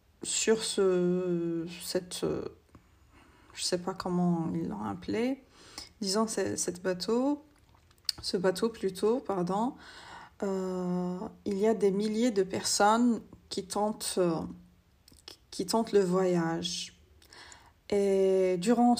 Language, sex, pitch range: Arabic, female, 180-215 Hz